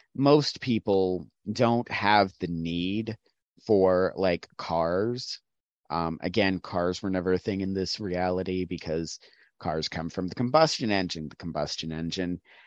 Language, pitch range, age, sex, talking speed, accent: English, 85-110 Hz, 30-49, male, 135 wpm, American